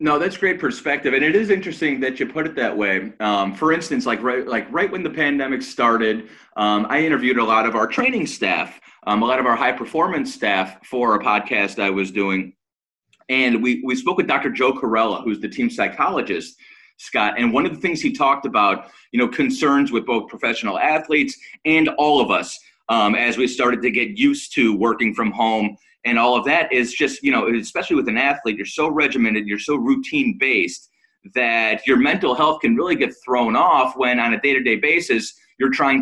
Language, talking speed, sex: English, 210 wpm, male